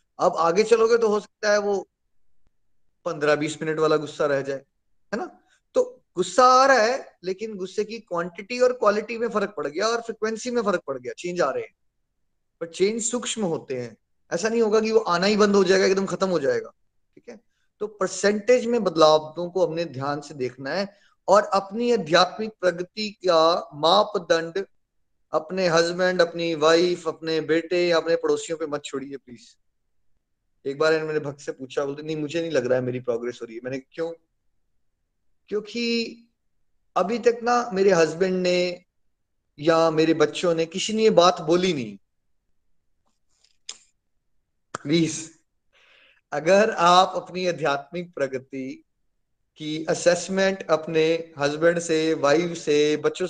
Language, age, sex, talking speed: Hindi, 20-39, male, 160 wpm